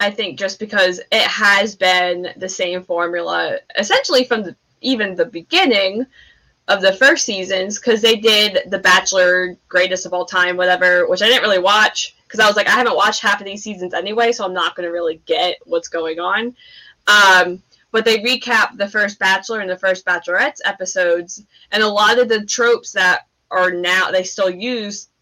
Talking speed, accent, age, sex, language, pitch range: 195 wpm, American, 10-29, female, English, 185-235 Hz